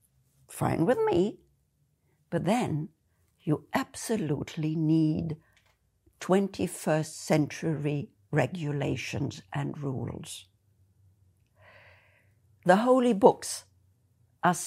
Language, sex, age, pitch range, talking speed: English, female, 60-79, 145-215 Hz, 70 wpm